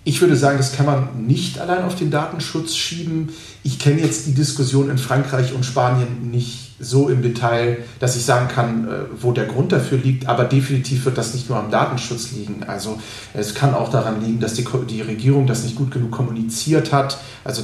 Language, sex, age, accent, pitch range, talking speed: German, male, 40-59, German, 120-140 Hz, 205 wpm